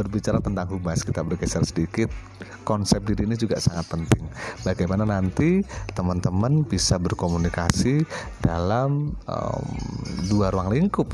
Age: 30-49